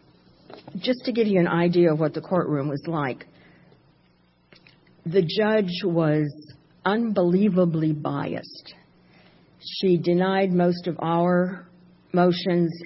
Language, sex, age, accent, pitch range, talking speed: English, female, 50-69, American, 145-180 Hz, 105 wpm